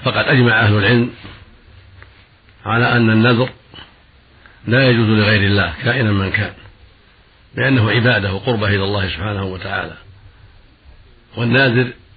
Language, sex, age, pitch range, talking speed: Arabic, male, 50-69, 100-125 Hz, 110 wpm